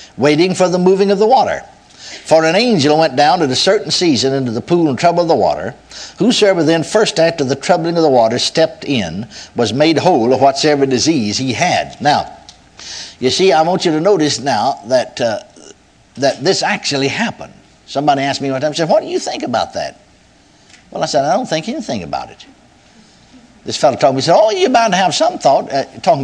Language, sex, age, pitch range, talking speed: English, male, 60-79, 135-205 Hz, 215 wpm